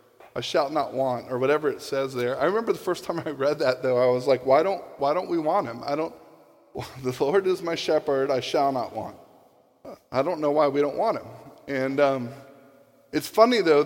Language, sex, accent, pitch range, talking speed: English, male, American, 140-185 Hz, 230 wpm